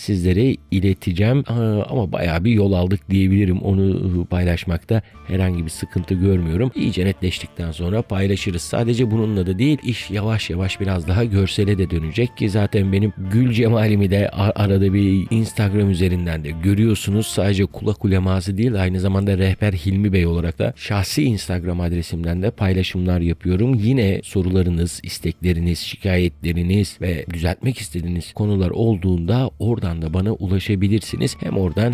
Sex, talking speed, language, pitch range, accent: male, 135 wpm, Turkish, 90-110 Hz, native